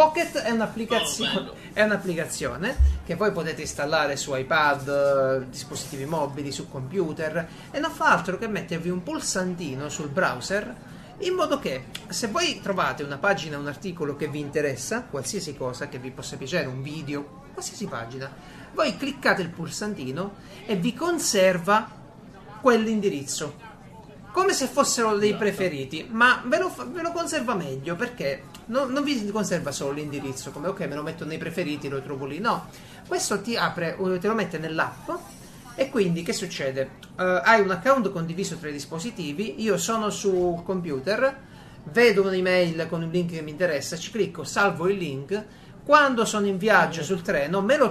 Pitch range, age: 150-215 Hz, 30-49